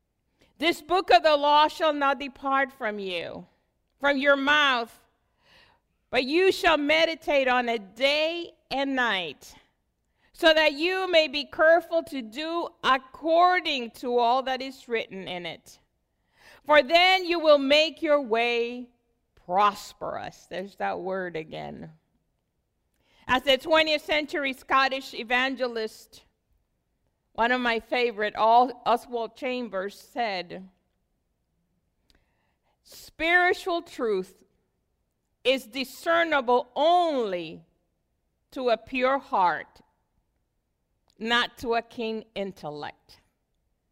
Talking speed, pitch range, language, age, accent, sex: 105 wpm, 220-300 Hz, English, 50-69, American, female